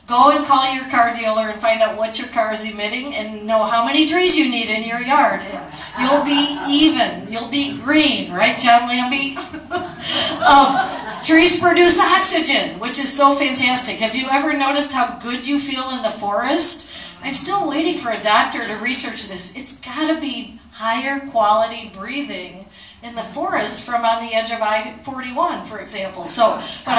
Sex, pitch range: female, 220-280 Hz